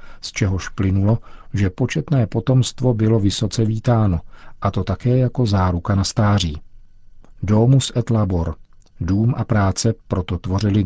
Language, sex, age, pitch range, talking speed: Czech, male, 50-69, 95-115 Hz, 135 wpm